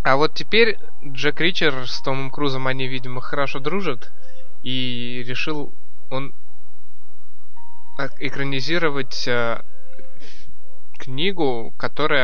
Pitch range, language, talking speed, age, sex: 120-140 Hz, Russian, 90 wpm, 20-39, male